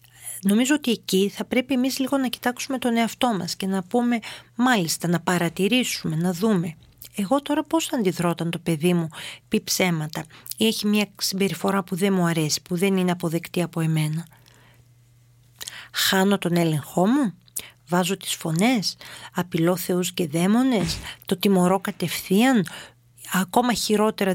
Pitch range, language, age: 170-210 Hz, Greek, 40-59